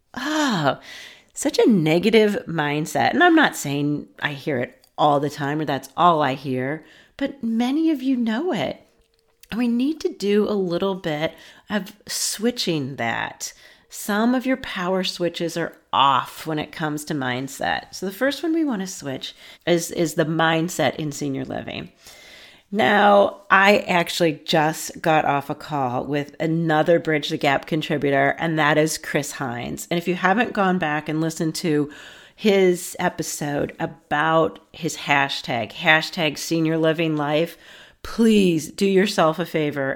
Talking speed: 160 wpm